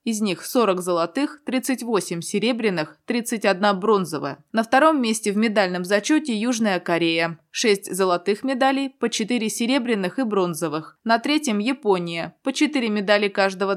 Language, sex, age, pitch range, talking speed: Russian, female, 20-39, 185-245 Hz, 135 wpm